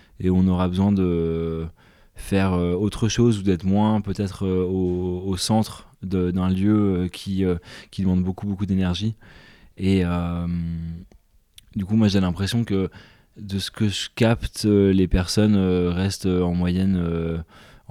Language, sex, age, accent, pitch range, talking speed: French, male, 20-39, French, 90-100 Hz, 145 wpm